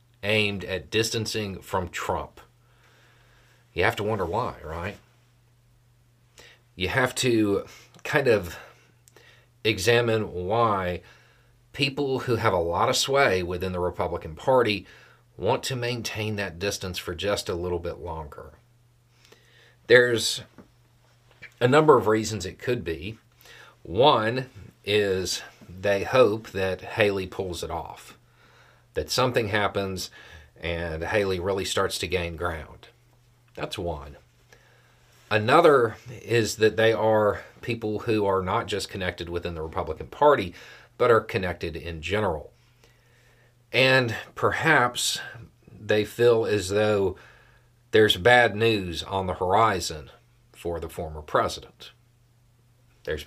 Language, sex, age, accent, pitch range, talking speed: English, male, 40-59, American, 95-120 Hz, 120 wpm